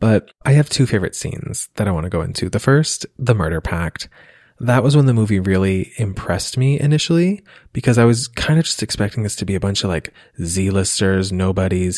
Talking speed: 210 wpm